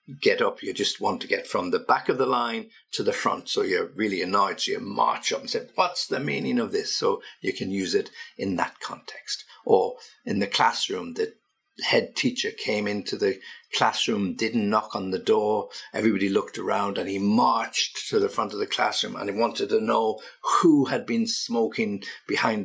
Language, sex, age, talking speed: English, male, 50-69, 205 wpm